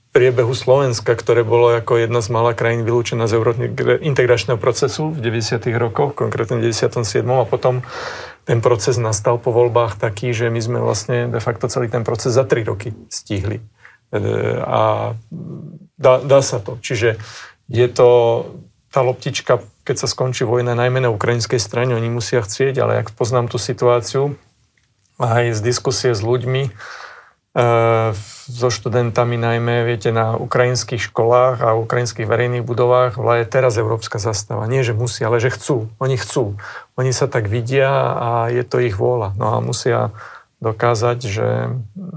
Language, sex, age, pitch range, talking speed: Slovak, male, 40-59, 115-125 Hz, 155 wpm